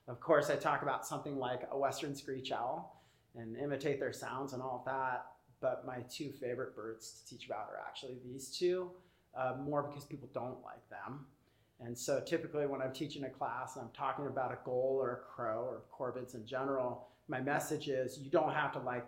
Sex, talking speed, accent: male, 210 wpm, American